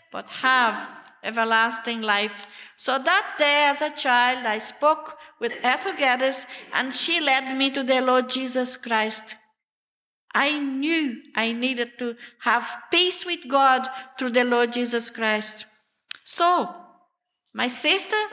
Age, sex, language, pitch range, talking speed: 50-69, female, English, 240-300 Hz, 135 wpm